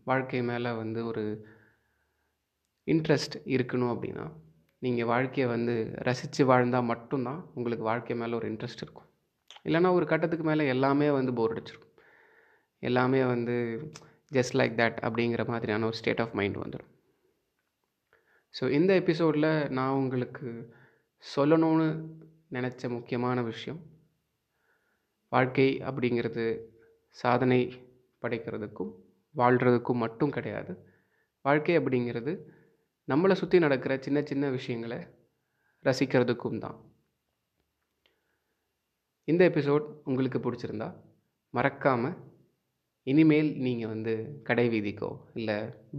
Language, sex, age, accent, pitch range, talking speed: Tamil, male, 20-39, native, 115-150 Hz, 100 wpm